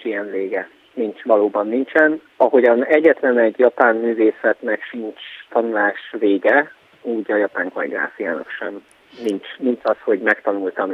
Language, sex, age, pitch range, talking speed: Hungarian, male, 30-49, 105-150 Hz, 125 wpm